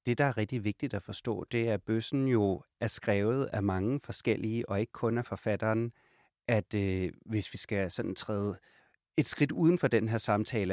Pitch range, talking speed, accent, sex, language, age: 105-120 Hz, 195 wpm, native, male, Danish, 30-49